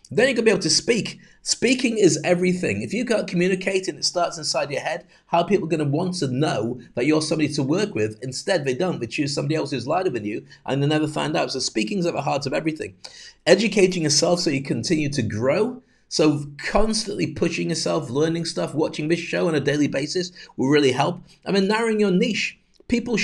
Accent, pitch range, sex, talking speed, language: British, 145-190 Hz, male, 230 wpm, English